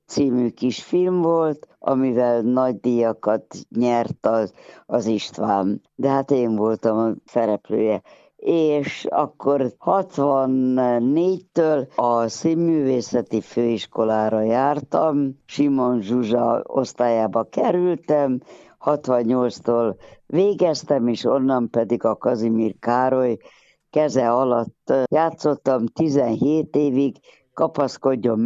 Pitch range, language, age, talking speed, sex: 115-145 Hz, Hungarian, 60-79, 90 wpm, female